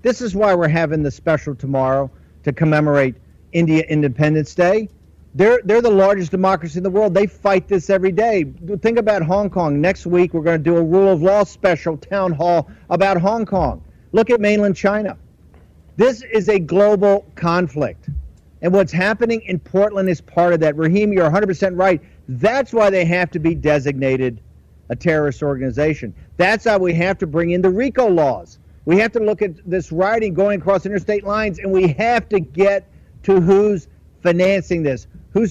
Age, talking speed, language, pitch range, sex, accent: 50-69, 185 wpm, English, 160-200 Hz, male, American